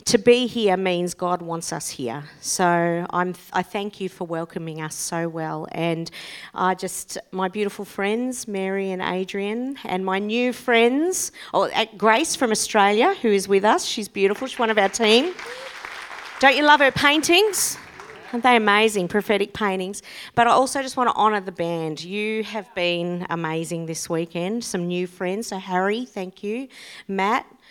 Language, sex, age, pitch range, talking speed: English, female, 40-59, 175-225 Hz, 175 wpm